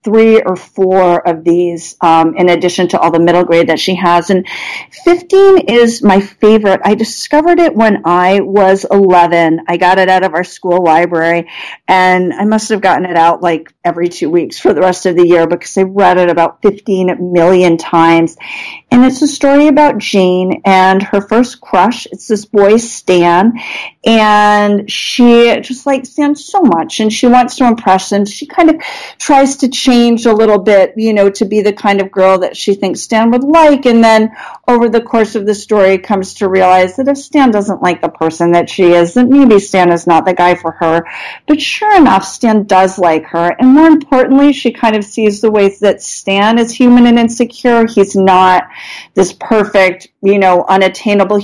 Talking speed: 200 wpm